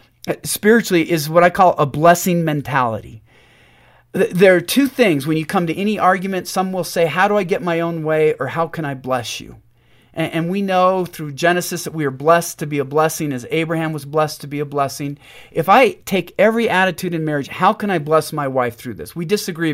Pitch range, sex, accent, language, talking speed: 145-185 Hz, male, American, English, 220 wpm